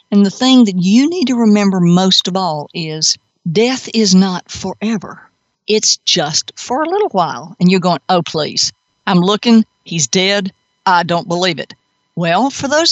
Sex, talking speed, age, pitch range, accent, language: female, 175 wpm, 50-69, 170-215 Hz, American, English